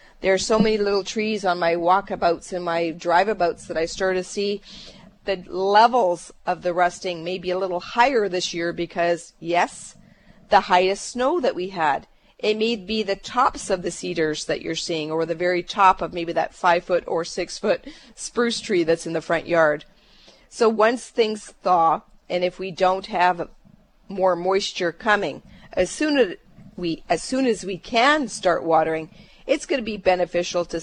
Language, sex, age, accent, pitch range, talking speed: English, female, 40-59, American, 175-215 Hz, 180 wpm